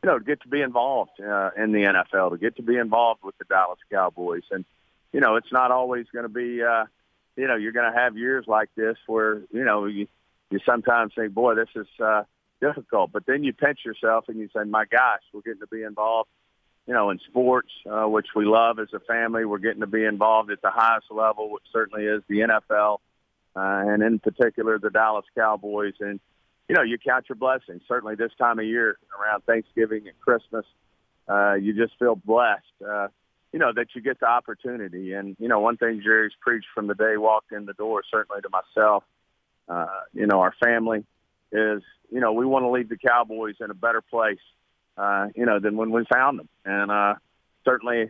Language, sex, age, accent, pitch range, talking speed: English, male, 50-69, American, 105-120 Hz, 215 wpm